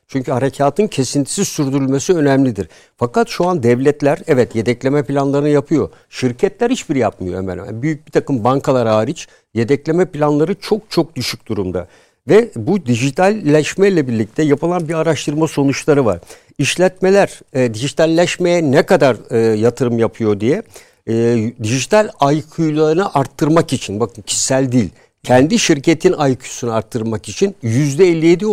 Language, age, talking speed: Turkish, 60-79, 125 wpm